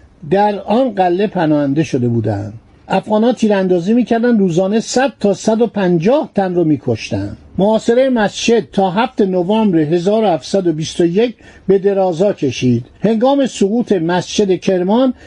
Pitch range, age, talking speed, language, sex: 175-230 Hz, 50-69, 120 wpm, Persian, male